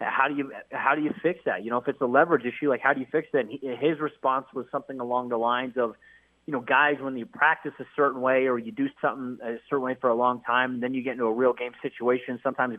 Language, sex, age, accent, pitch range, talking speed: English, male, 30-49, American, 120-150 Hz, 280 wpm